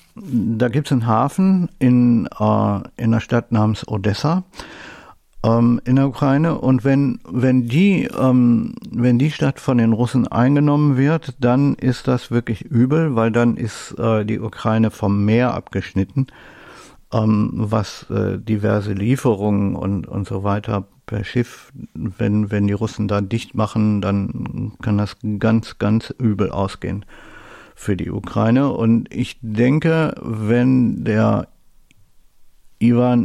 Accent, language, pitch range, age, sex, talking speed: German, German, 105-130 Hz, 50-69, male, 135 wpm